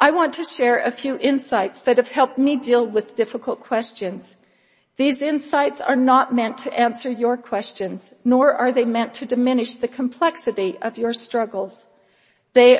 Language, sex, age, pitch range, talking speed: English, female, 50-69, 230-280 Hz, 170 wpm